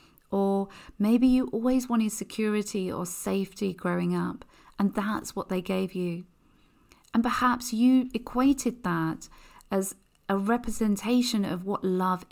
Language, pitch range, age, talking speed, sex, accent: English, 180-230 Hz, 40-59, 130 wpm, female, British